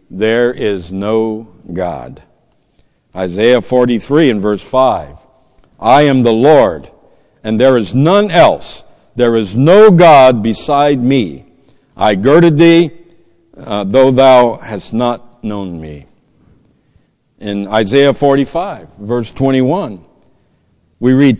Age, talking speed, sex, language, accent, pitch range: 60-79, 125 wpm, male, English, American, 105-145 Hz